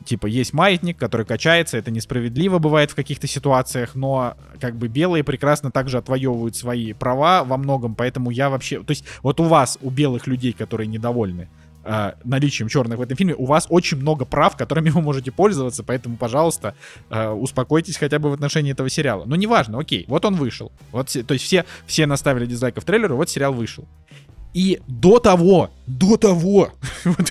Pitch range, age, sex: 120-160 Hz, 20-39, male